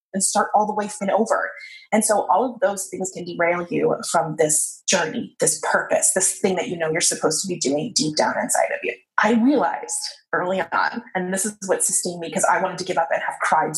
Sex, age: female, 20-39